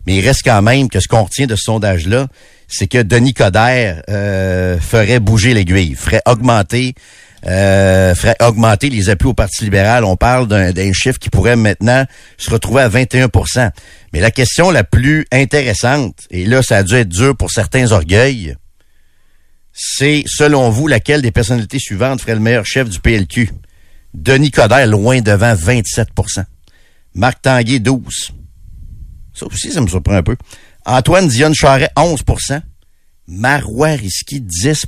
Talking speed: 155 wpm